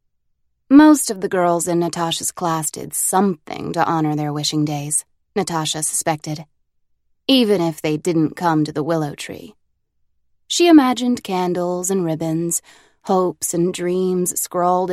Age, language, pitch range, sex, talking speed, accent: 20-39, English, 160-215 Hz, female, 135 wpm, American